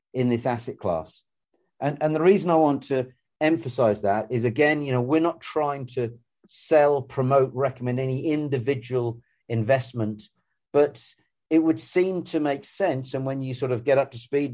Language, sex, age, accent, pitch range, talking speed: English, male, 50-69, British, 120-155 Hz, 180 wpm